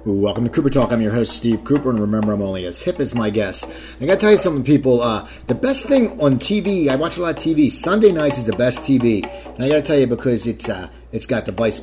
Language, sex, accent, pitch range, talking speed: English, male, American, 110-140 Hz, 285 wpm